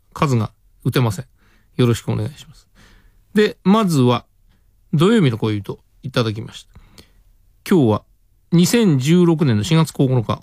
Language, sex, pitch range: Japanese, male, 105-150 Hz